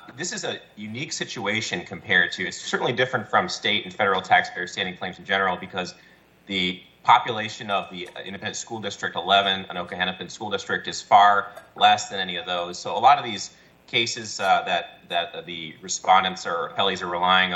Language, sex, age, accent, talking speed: English, male, 30-49, American, 185 wpm